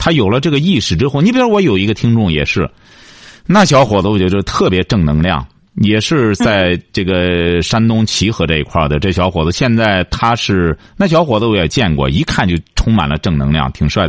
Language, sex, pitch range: Chinese, male, 90-125 Hz